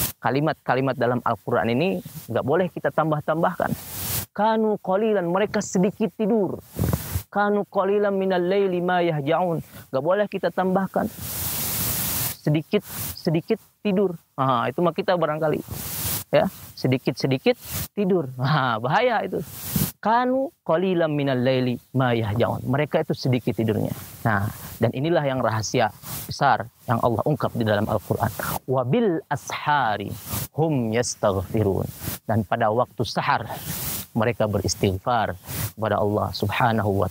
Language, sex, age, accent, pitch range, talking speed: English, male, 30-49, Indonesian, 115-175 Hz, 115 wpm